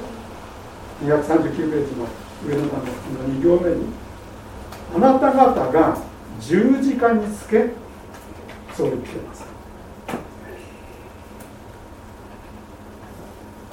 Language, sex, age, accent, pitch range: Japanese, male, 60-79, native, 105-170 Hz